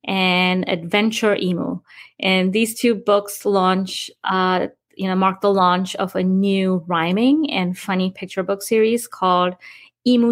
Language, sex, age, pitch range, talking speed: English, female, 30-49, 185-225 Hz, 145 wpm